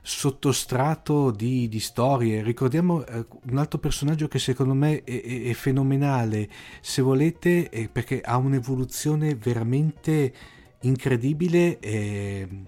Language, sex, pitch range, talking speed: Italian, male, 110-130 Hz, 105 wpm